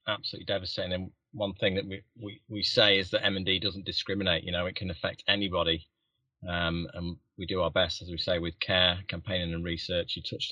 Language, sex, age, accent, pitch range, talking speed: English, male, 30-49, British, 85-95 Hz, 210 wpm